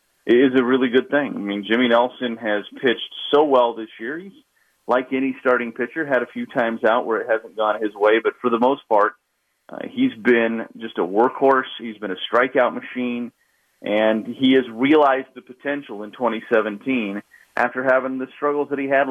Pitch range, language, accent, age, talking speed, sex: 115-145 Hz, English, American, 30-49, 200 wpm, male